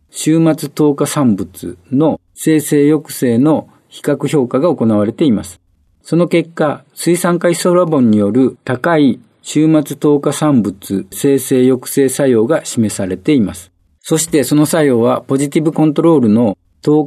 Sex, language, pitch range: male, Japanese, 110-155 Hz